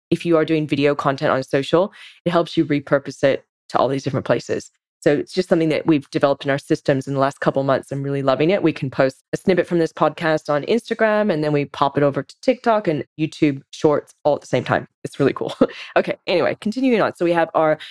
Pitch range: 145-175 Hz